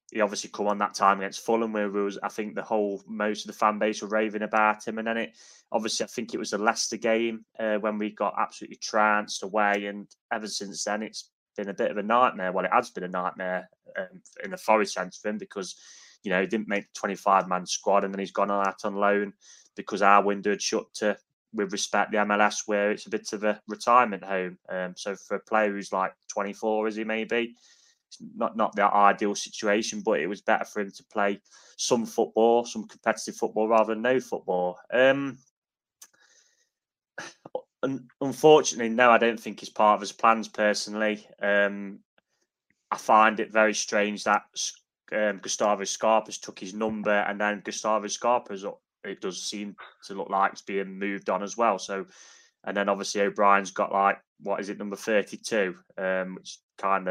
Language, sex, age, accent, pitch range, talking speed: English, male, 20-39, British, 100-110 Hz, 200 wpm